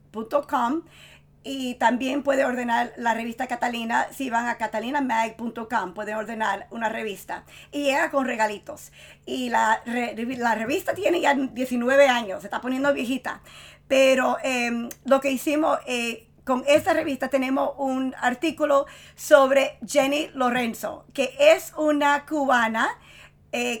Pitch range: 240-285 Hz